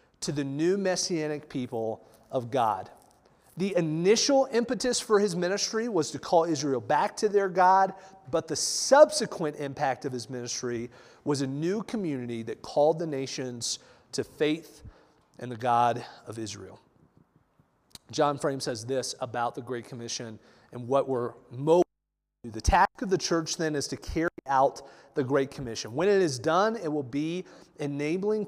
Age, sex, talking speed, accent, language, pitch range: 40-59, male, 160 wpm, American, English, 125-170 Hz